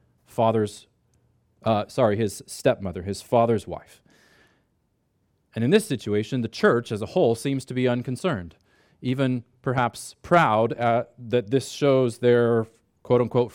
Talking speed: 130 wpm